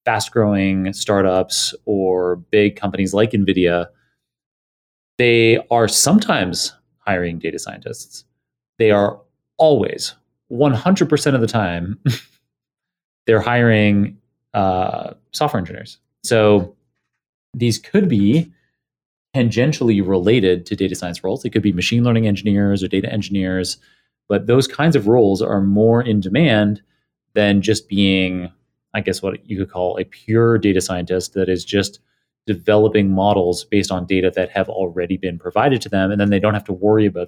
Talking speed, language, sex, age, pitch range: 145 wpm, English, male, 30-49, 95-110 Hz